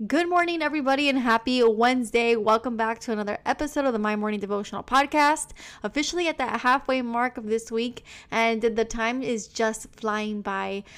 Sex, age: female, 20-39